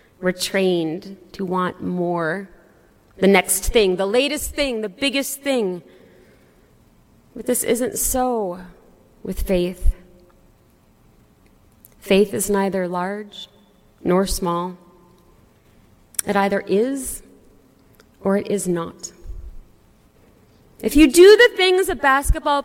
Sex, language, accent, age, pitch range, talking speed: female, English, American, 30-49, 195-290 Hz, 105 wpm